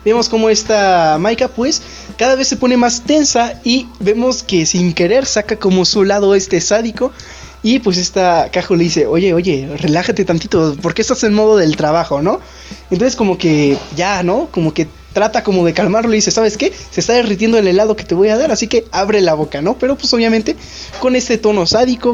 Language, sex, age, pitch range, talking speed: Spanish, male, 20-39, 175-240 Hz, 210 wpm